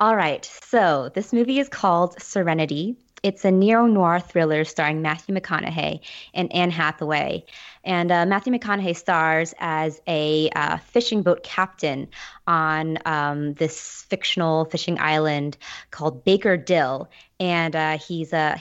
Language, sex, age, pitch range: English, female, 20-39, 155-185 Hz